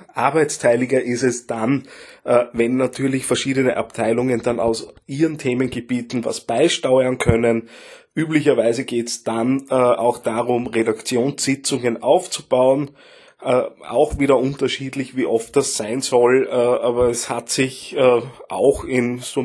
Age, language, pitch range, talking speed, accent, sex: 20-39, German, 115-135 Hz, 115 wpm, Austrian, male